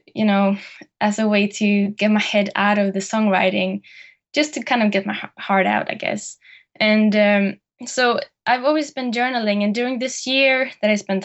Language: English